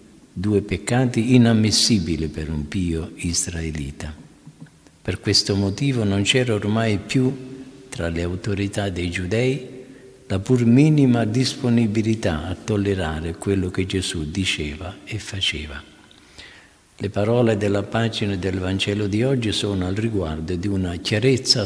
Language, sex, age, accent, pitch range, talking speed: Italian, male, 50-69, native, 90-120 Hz, 125 wpm